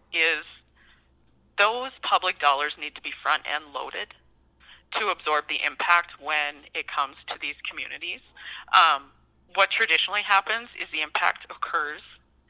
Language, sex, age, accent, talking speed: English, female, 30-49, American, 130 wpm